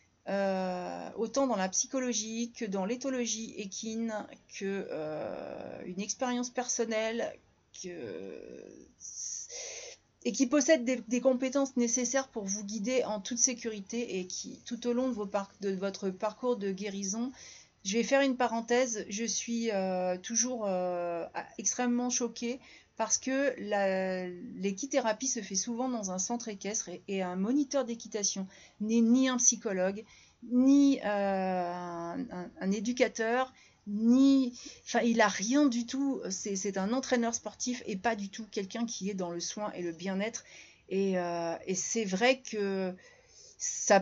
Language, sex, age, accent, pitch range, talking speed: French, female, 30-49, French, 195-245 Hz, 150 wpm